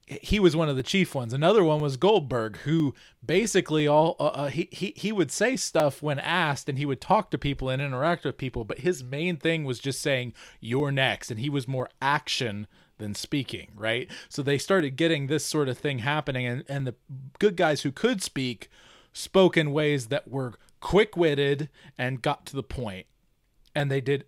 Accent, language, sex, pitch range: American, English, male, 130-165 Hz